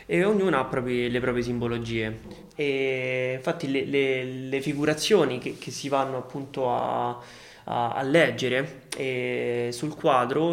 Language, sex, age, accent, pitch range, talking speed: Italian, male, 20-39, native, 125-145 Hz, 145 wpm